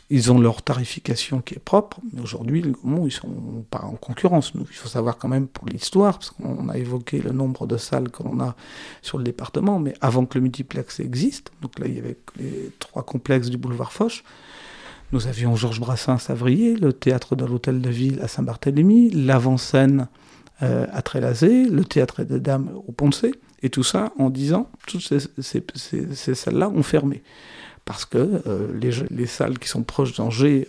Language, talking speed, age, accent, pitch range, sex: French, 195 wpm, 50-69, French, 125-155 Hz, male